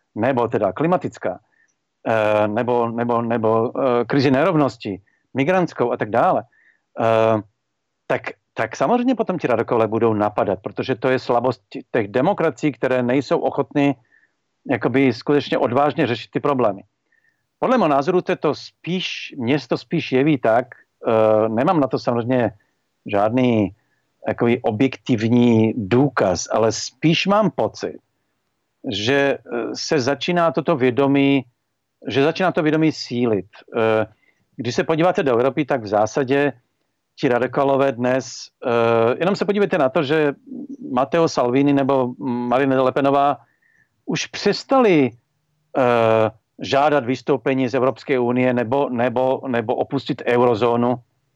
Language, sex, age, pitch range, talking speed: Czech, male, 50-69, 120-150 Hz, 115 wpm